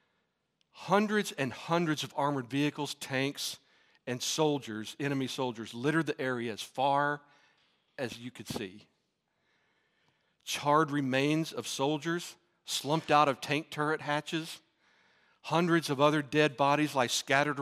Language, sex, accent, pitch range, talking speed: English, male, American, 125-150 Hz, 125 wpm